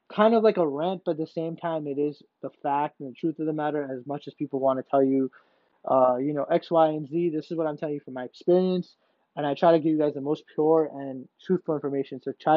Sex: male